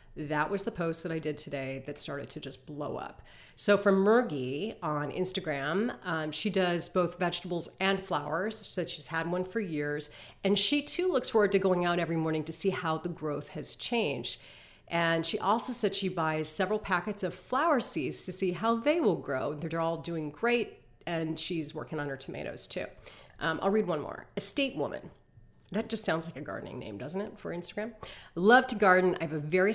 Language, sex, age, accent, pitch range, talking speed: English, female, 40-59, American, 155-200 Hz, 210 wpm